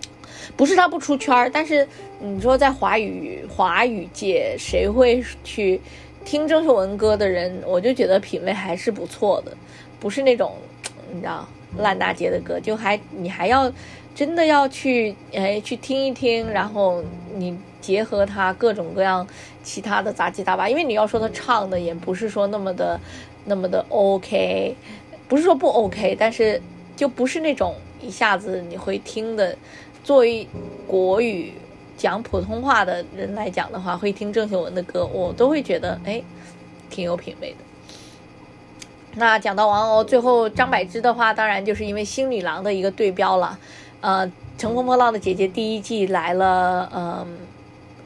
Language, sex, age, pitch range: Chinese, female, 20-39, 185-240 Hz